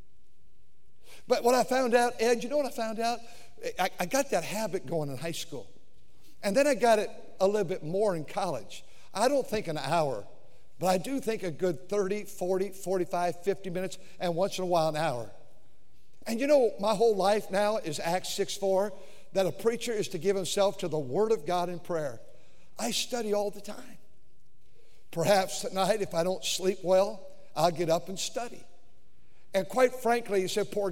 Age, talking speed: 60-79, 200 wpm